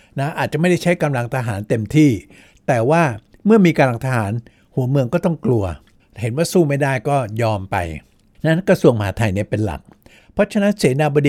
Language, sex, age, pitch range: Thai, male, 60-79, 120-175 Hz